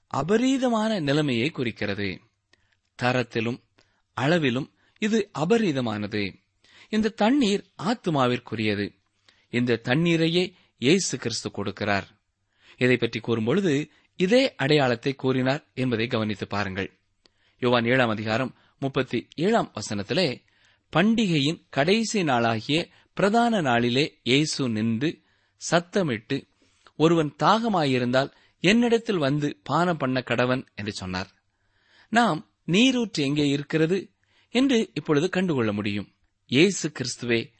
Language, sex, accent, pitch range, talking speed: Tamil, male, native, 110-165 Hz, 90 wpm